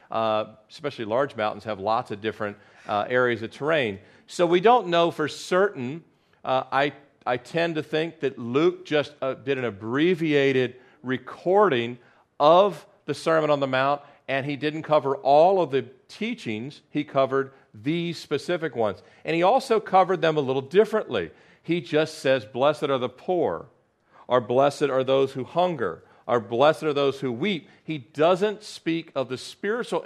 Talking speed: 170 wpm